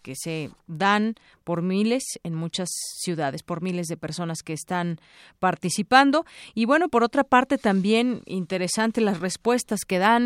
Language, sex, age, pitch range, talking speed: Spanish, female, 30-49, 175-220 Hz, 150 wpm